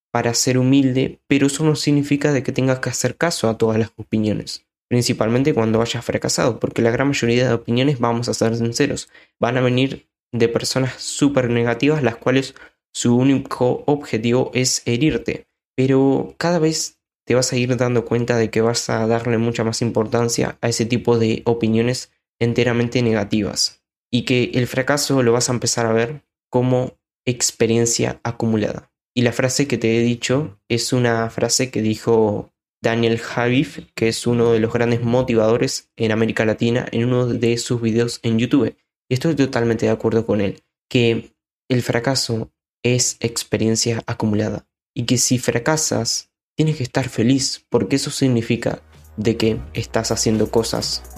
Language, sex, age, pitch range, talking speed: Spanish, male, 10-29, 115-130 Hz, 165 wpm